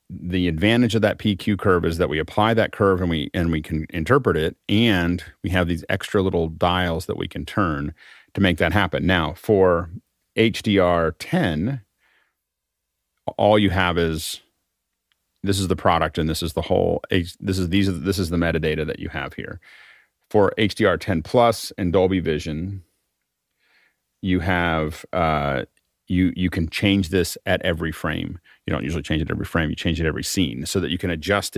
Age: 40-59